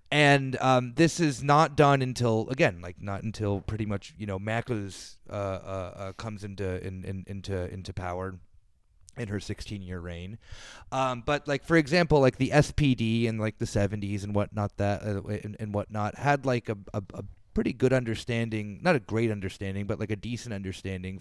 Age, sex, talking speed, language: 30-49, male, 190 wpm, English